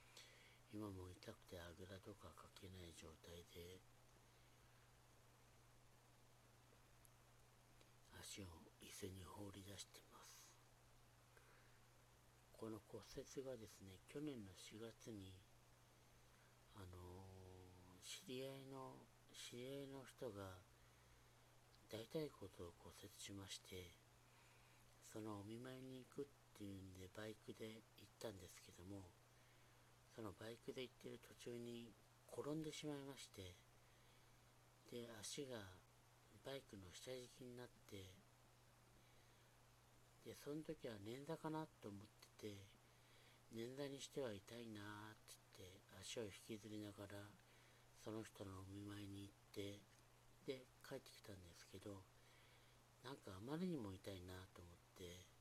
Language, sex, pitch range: Japanese, male, 100-120 Hz